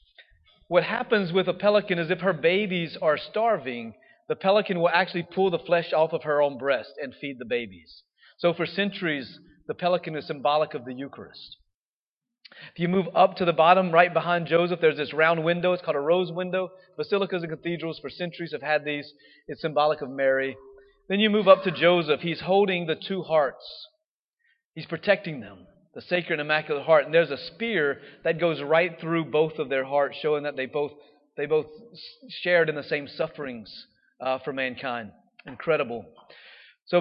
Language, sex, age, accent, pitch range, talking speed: English, male, 40-59, American, 150-195 Hz, 185 wpm